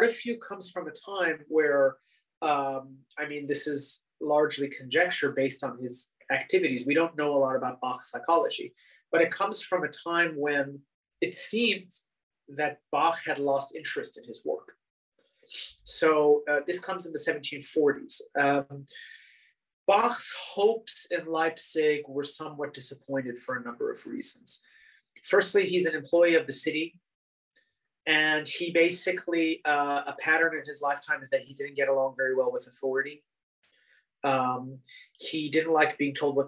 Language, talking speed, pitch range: English, 155 wpm, 140-175 Hz